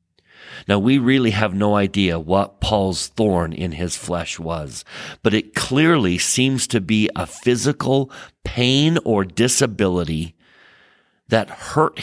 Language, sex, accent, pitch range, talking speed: English, male, American, 95-130 Hz, 130 wpm